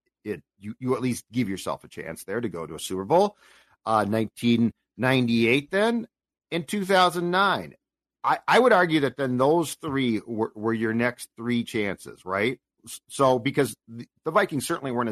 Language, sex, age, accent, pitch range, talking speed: English, male, 40-59, American, 110-140 Hz, 165 wpm